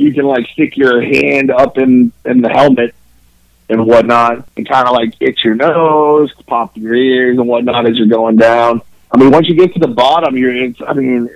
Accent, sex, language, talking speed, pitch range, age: American, male, English, 215 wpm, 115-135 Hz, 30-49